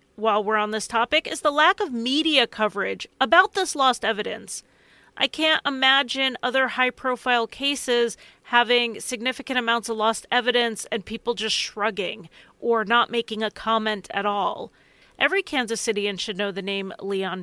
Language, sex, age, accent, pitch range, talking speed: English, female, 30-49, American, 215-270 Hz, 160 wpm